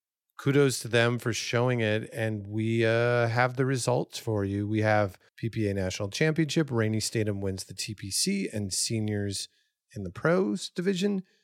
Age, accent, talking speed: 30-49, American, 155 wpm